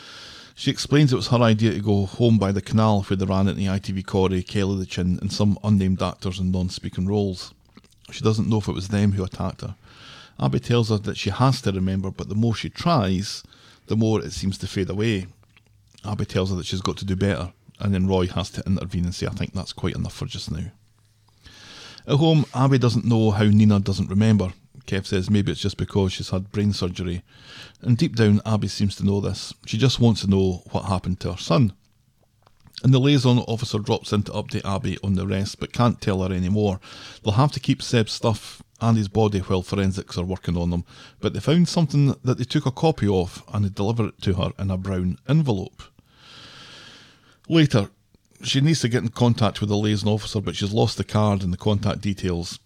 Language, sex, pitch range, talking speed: English, male, 95-115 Hz, 220 wpm